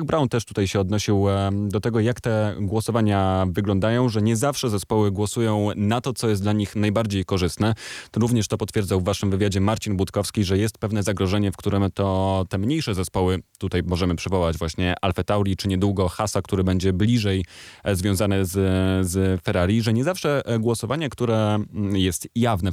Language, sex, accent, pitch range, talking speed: Polish, male, native, 95-115 Hz, 170 wpm